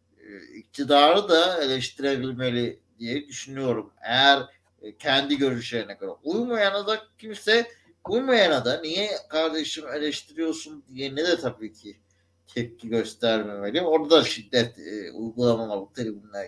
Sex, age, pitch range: male, 60-79, 115-175 Hz